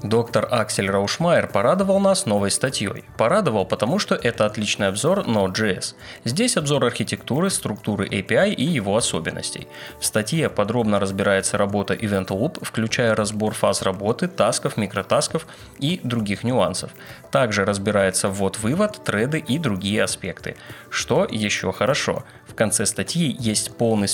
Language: Russian